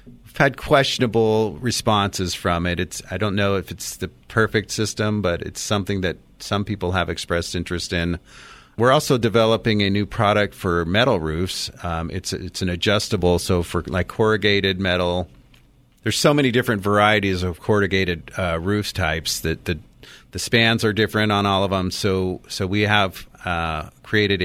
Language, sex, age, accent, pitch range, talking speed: English, male, 40-59, American, 85-105 Hz, 170 wpm